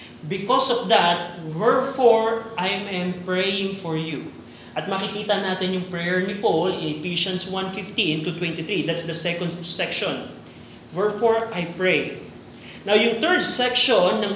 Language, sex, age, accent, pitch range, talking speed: Filipino, male, 20-39, native, 185-225 Hz, 135 wpm